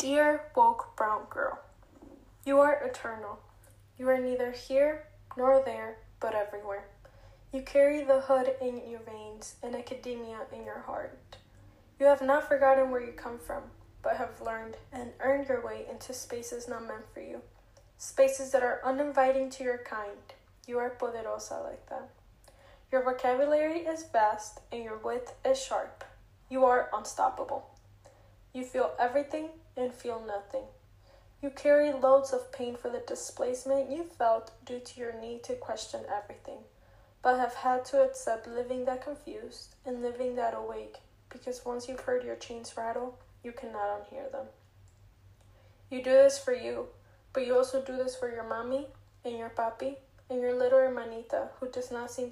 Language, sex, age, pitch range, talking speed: English, female, 10-29, 225-270 Hz, 165 wpm